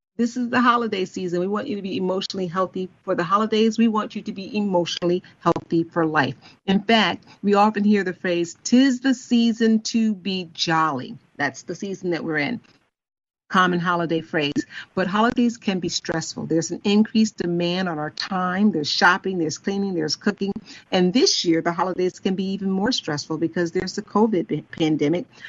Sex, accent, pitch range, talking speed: female, American, 165-205 Hz, 185 wpm